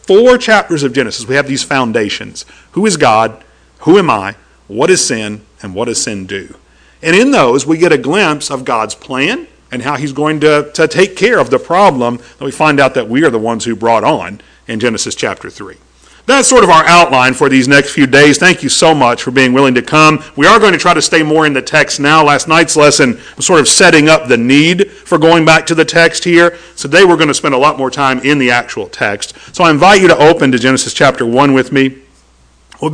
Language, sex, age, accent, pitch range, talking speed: English, male, 50-69, American, 135-170 Hz, 240 wpm